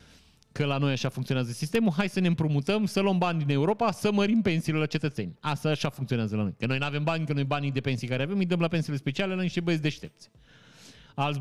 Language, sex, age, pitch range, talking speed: Romanian, male, 30-49, 130-175 Hz, 250 wpm